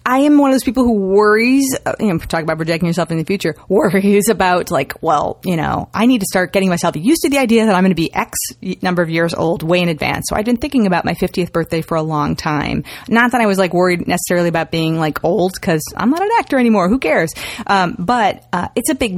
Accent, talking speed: American, 260 wpm